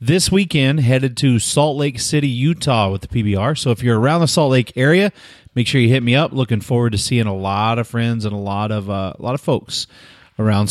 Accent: American